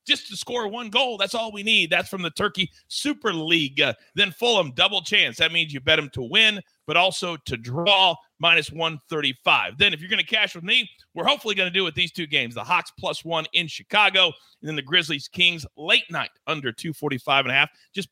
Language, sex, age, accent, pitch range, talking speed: English, male, 40-59, American, 135-200 Hz, 230 wpm